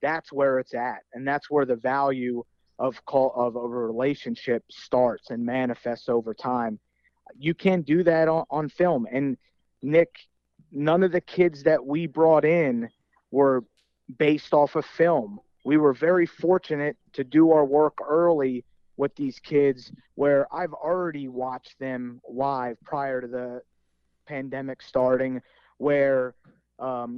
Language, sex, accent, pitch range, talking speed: English, male, American, 125-150 Hz, 145 wpm